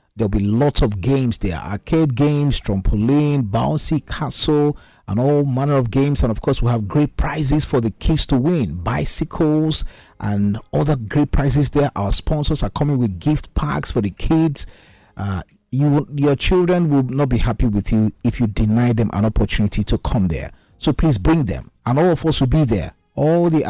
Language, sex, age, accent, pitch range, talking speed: English, male, 50-69, Nigerian, 110-150 Hz, 195 wpm